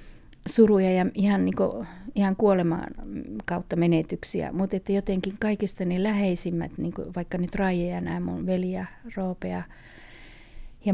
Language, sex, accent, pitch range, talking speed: Finnish, female, native, 175-205 Hz, 135 wpm